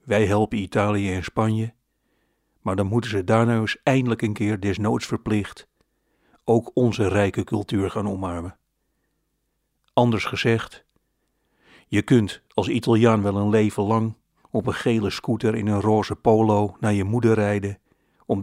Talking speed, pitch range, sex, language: 145 wpm, 105-115 Hz, male, Dutch